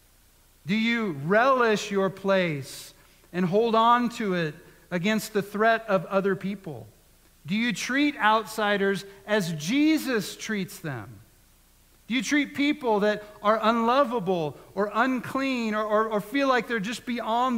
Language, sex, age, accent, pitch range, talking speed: English, male, 50-69, American, 135-205 Hz, 140 wpm